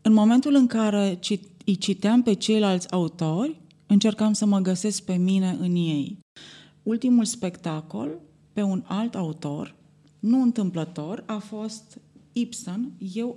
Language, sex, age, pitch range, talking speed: Romanian, female, 30-49, 160-210 Hz, 130 wpm